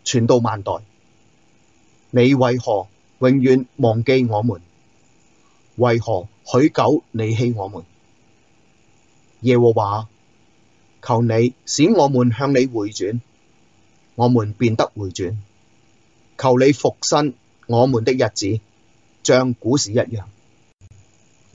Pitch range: 115-130 Hz